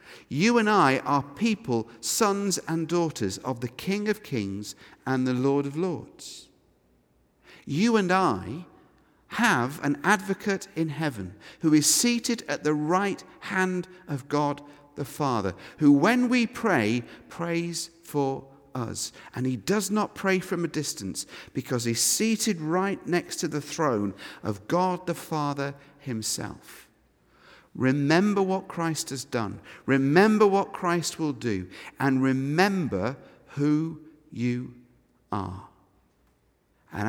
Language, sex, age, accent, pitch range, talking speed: English, male, 50-69, British, 120-175 Hz, 130 wpm